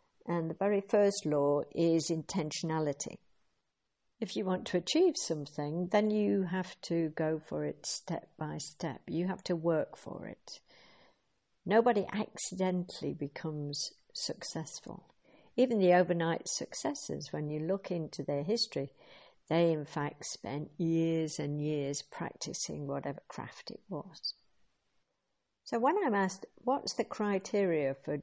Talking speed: 135 wpm